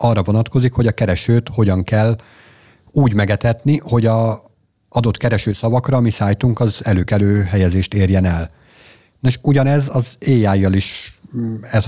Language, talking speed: Hungarian, 135 wpm